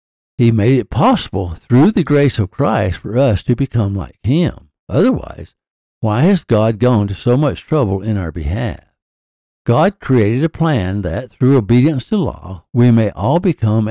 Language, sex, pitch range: English, male, 95-130 Hz